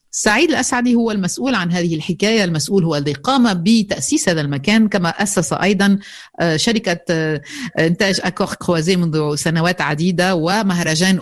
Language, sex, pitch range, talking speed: Arabic, female, 155-200 Hz, 135 wpm